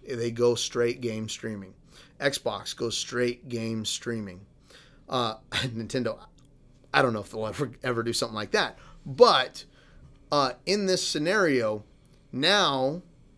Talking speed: 130 wpm